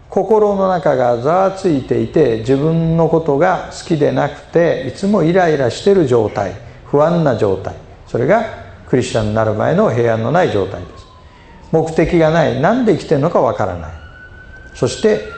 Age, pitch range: 50-69, 110-175 Hz